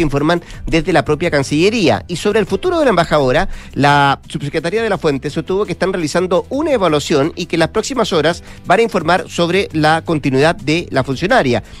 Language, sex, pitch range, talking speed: Spanish, male, 140-175 Hz, 195 wpm